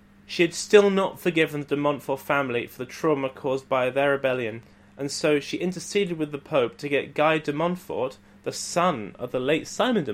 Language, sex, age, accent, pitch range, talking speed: English, male, 30-49, British, 120-160 Hz, 205 wpm